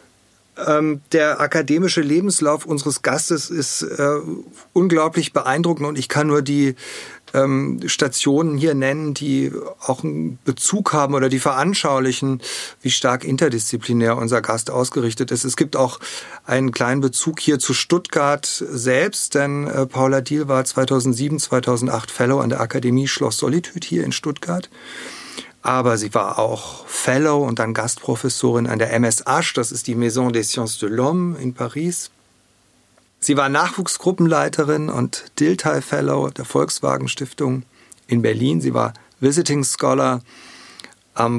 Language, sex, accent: German, male, German